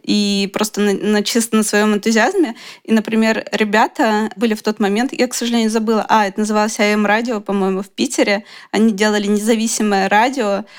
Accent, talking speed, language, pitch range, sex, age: native, 170 wpm, Russian, 210-240 Hz, female, 20-39